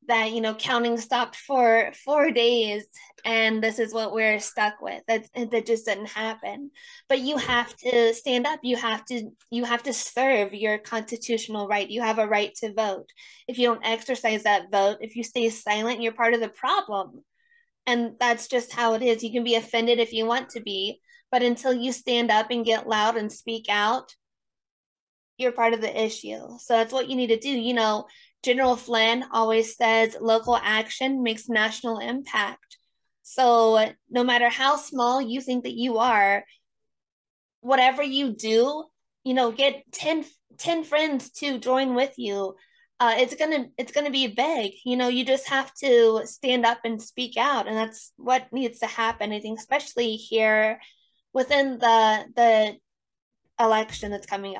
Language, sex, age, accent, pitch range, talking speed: English, female, 10-29, American, 225-255 Hz, 180 wpm